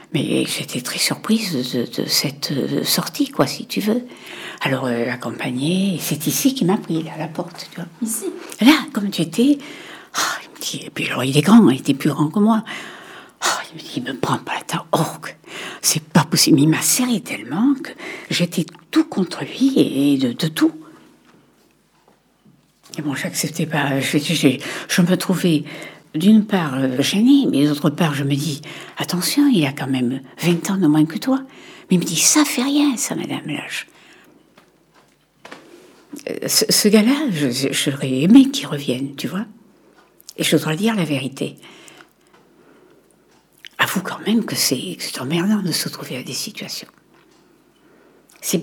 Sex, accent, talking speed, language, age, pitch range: female, French, 175 wpm, French, 60-79, 150-235 Hz